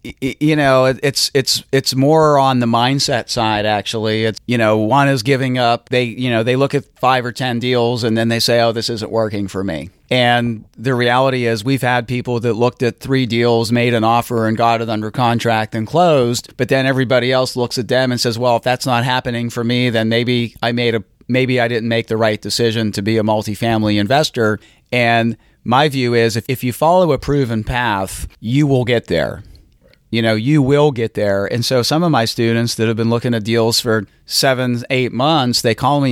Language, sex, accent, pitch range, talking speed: English, male, American, 110-130 Hz, 220 wpm